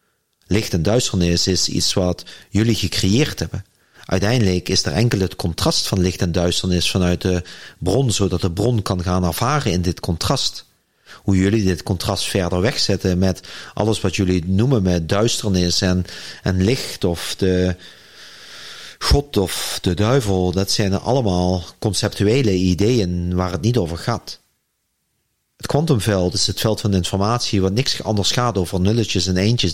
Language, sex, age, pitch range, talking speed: Dutch, male, 40-59, 90-110 Hz, 160 wpm